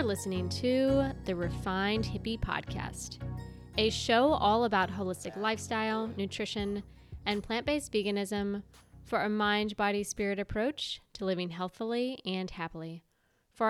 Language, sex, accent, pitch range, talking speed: English, female, American, 180-210 Hz, 125 wpm